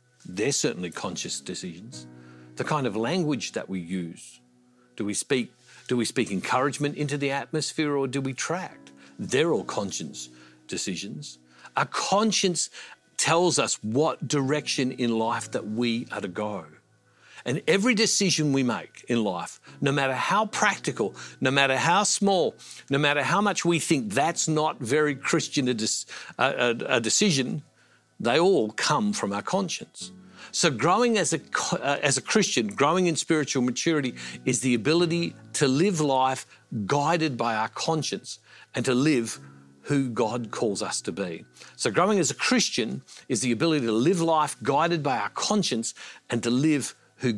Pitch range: 115-160 Hz